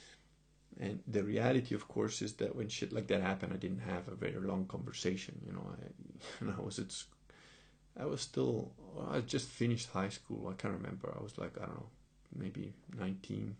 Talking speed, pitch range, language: 180 wpm, 100-125 Hz, English